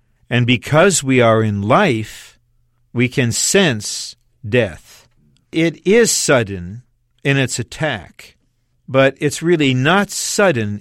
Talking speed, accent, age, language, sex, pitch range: 115 wpm, American, 50-69, English, male, 115-145 Hz